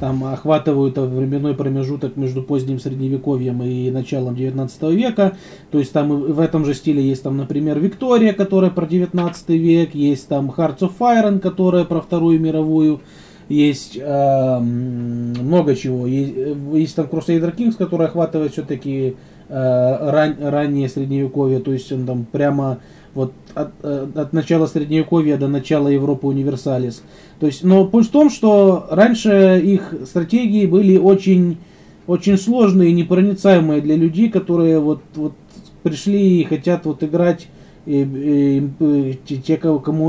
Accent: native